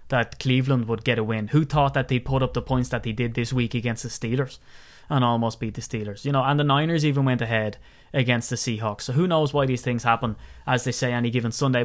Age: 20-39